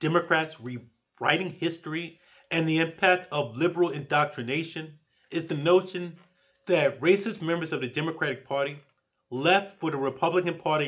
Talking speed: 130 wpm